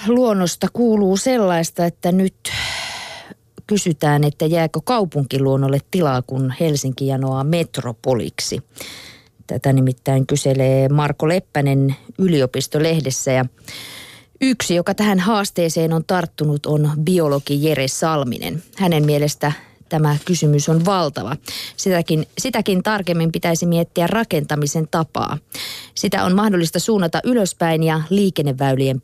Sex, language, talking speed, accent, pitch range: female, Finnish, 105 wpm, native, 145-185 Hz